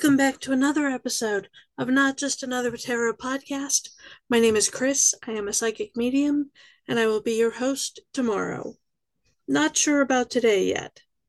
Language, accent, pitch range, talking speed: English, American, 220-275 Hz, 170 wpm